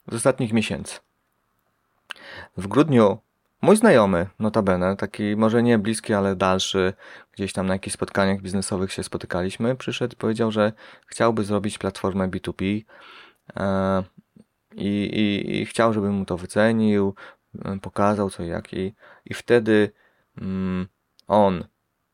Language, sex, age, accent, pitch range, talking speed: Polish, male, 30-49, native, 95-110 Hz, 125 wpm